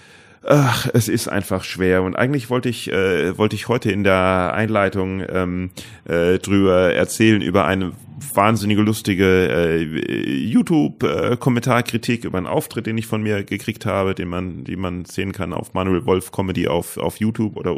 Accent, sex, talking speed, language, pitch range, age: German, male, 160 wpm, German, 100-125 Hz, 30-49